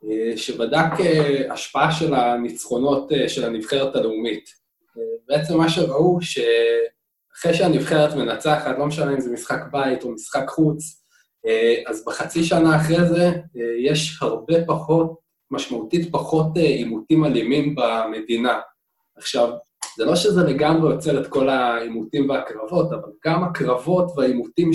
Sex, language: male, Hebrew